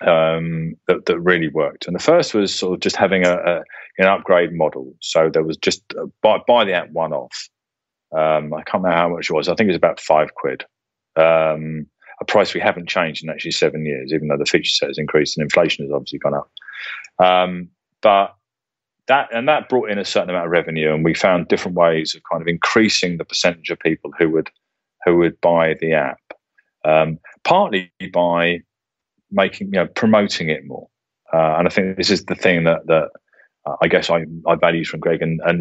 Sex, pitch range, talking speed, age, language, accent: male, 80-95 Hz, 210 wpm, 30-49, English, British